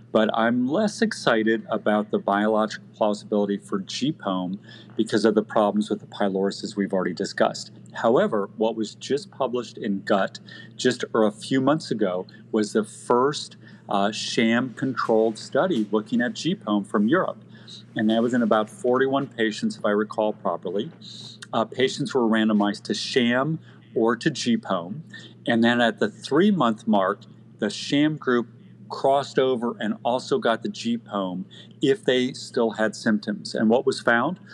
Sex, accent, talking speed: male, American, 155 wpm